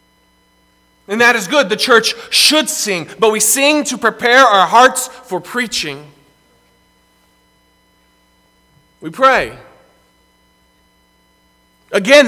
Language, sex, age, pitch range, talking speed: English, male, 40-59, 165-245 Hz, 100 wpm